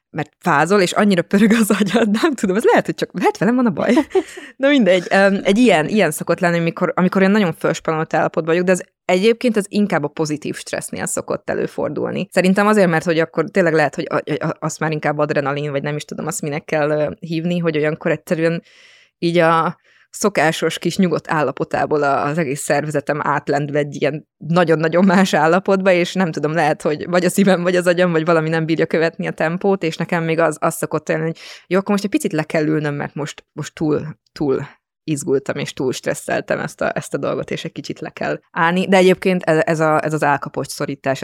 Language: Hungarian